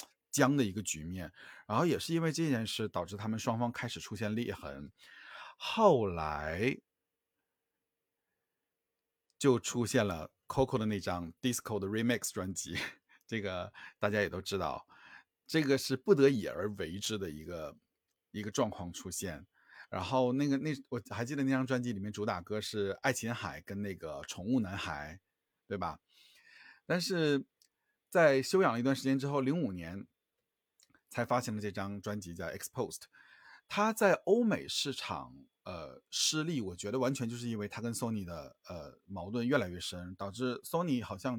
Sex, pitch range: male, 95-130 Hz